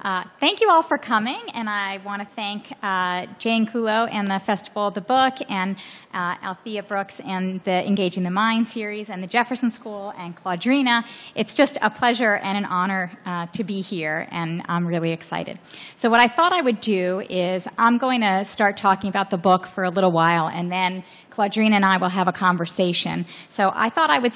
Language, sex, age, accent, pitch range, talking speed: English, female, 30-49, American, 180-220 Hz, 205 wpm